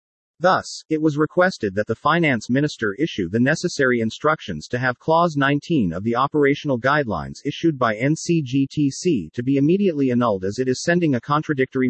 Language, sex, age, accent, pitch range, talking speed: English, male, 40-59, American, 115-160 Hz, 165 wpm